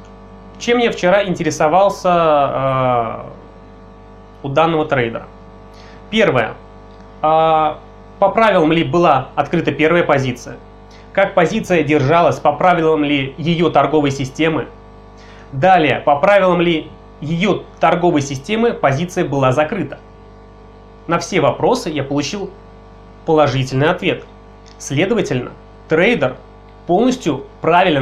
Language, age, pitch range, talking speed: Russian, 20-39, 115-175 Hz, 100 wpm